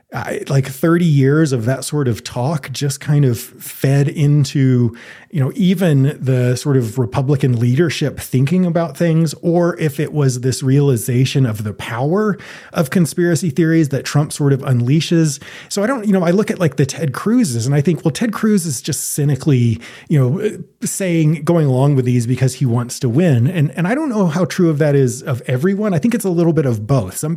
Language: English